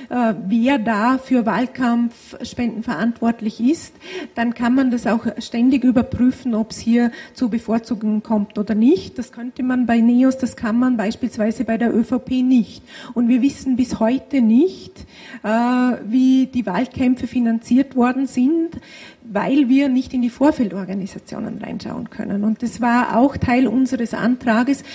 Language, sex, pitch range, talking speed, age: German, female, 225-255 Hz, 145 wpm, 40-59